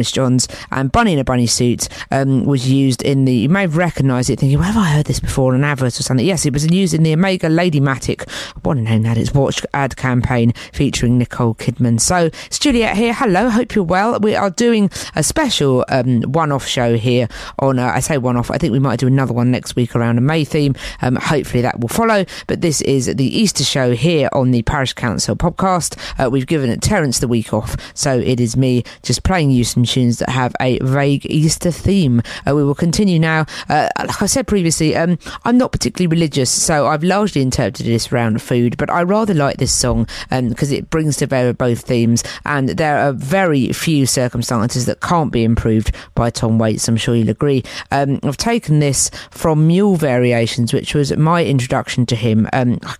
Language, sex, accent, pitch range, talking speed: English, female, British, 125-160 Hz, 215 wpm